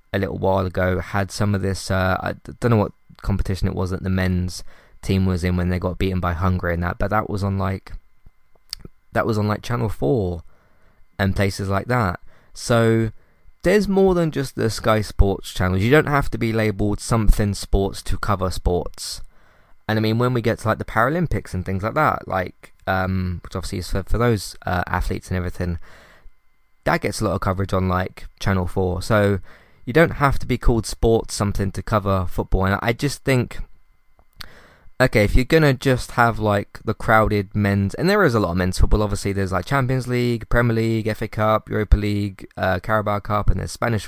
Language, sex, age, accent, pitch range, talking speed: English, male, 20-39, British, 95-115 Hz, 210 wpm